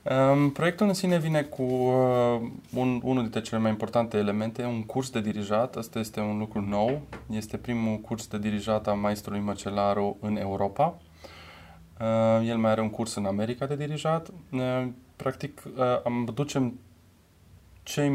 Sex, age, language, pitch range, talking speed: male, 20-39, Romanian, 105-130 Hz, 140 wpm